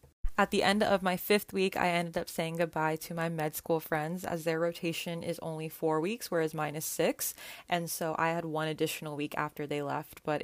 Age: 20-39